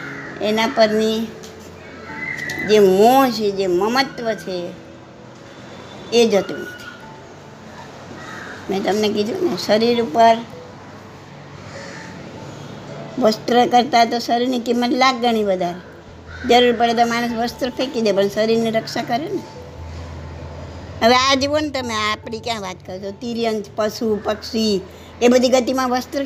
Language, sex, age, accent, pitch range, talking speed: Gujarati, male, 60-79, American, 210-250 Hz, 80 wpm